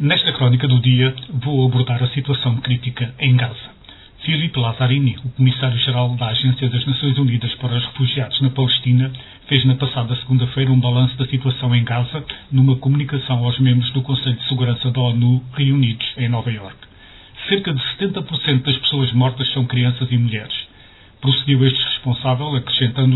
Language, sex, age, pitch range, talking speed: Portuguese, male, 40-59, 125-135 Hz, 165 wpm